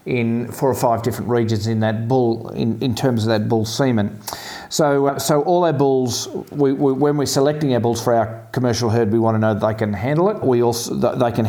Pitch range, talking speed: 115-140 Hz, 245 wpm